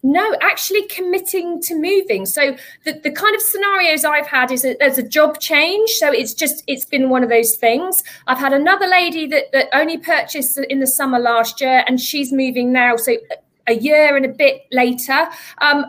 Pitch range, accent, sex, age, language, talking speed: 270-360 Hz, British, female, 40-59, English, 200 wpm